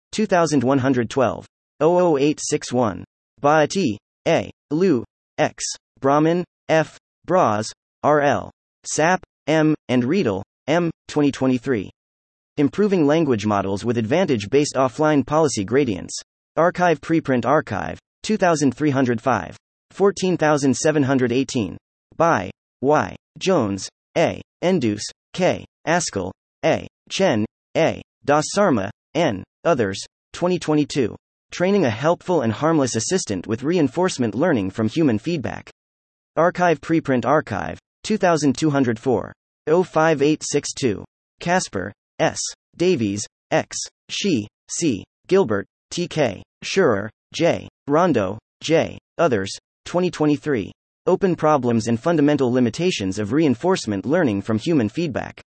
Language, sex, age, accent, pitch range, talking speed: English, male, 30-49, American, 115-165 Hz, 95 wpm